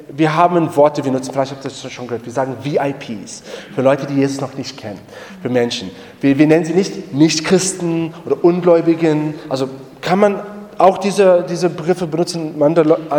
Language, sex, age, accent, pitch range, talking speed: German, male, 30-49, German, 145-185 Hz, 175 wpm